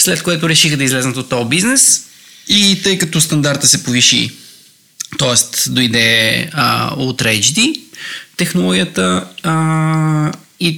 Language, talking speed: Bulgarian, 115 wpm